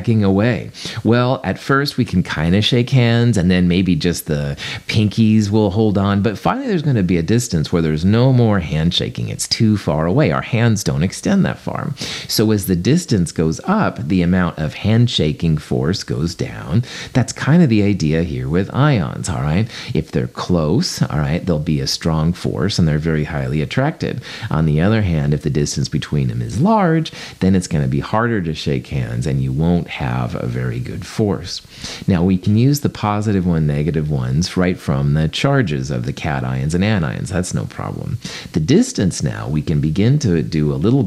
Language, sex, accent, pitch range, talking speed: English, male, American, 75-115 Hz, 205 wpm